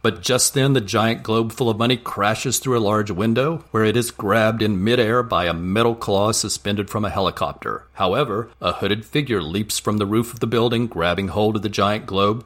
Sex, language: male, English